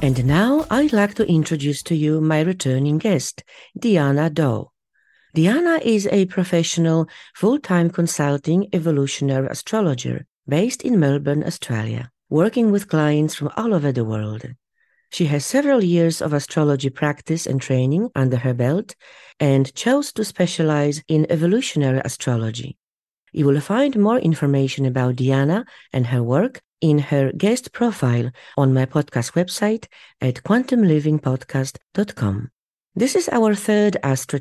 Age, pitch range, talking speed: 40-59, 135-190 Hz, 135 wpm